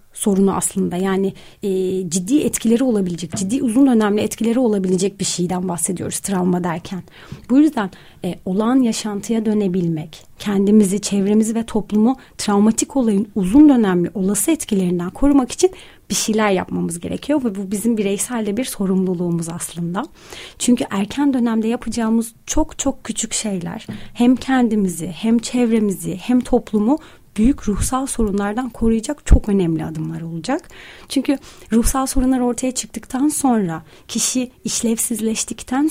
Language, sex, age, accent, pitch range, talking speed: Turkish, female, 30-49, native, 195-255 Hz, 130 wpm